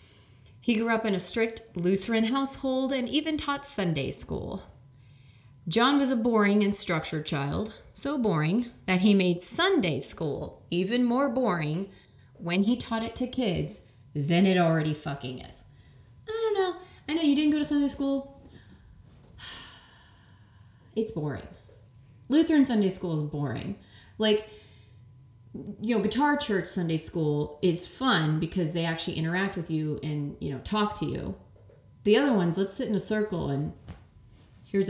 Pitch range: 140-225 Hz